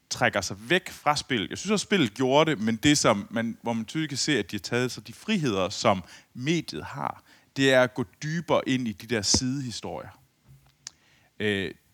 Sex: male